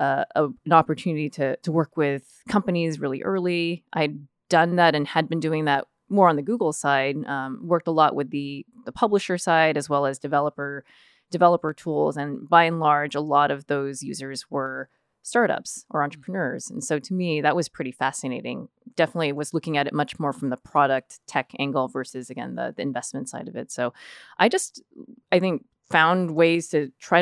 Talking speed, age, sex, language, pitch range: 195 wpm, 20-39, female, English, 140-165 Hz